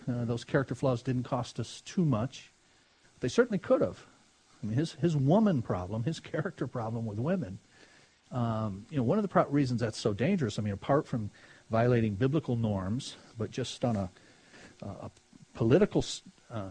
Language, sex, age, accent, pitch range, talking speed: English, male, 50-69, American, 115-160 Hz, 175 wpm